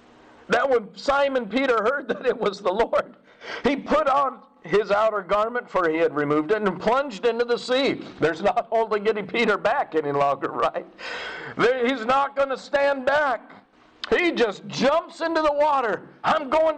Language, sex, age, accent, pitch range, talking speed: English, male, 50-69, American, 170-255 Hz, 175 wpm